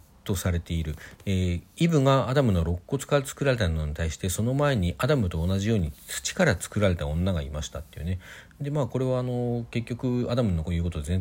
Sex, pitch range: male, 85-115 Hz